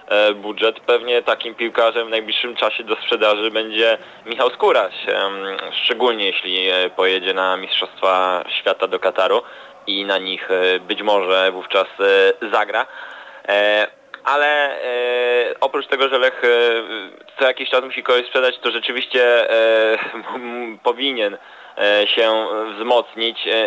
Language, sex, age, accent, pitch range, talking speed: Polish, male, 20-39, native, 105-120 Hz, 110 wpm